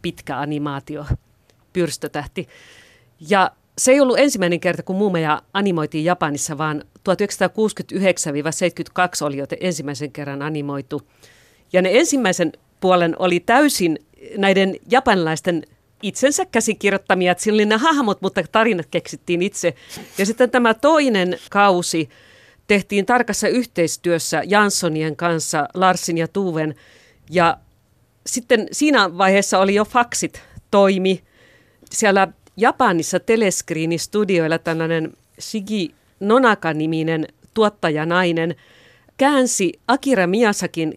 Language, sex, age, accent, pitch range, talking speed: Finnish, female, 50-69, native, 160-210 Hz, 100 wpm